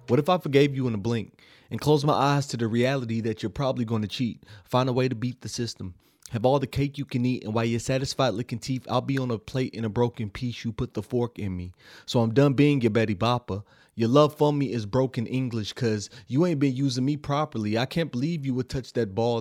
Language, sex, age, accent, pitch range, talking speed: English, male, 30-49, American, 115-135 Hz, 265 wpm